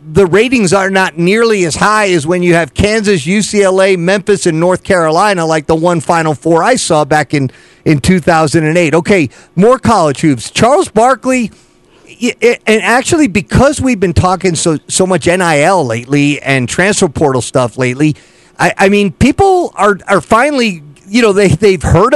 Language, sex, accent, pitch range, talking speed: English, male, American, 170-225 Hz, 170 wpm